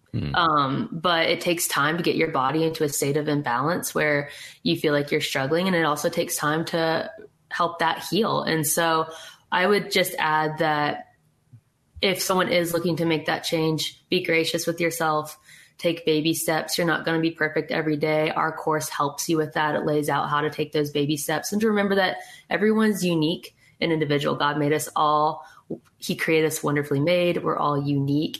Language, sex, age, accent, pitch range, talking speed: English, female, 20-39, American, 145-165 Hz, 200 wpm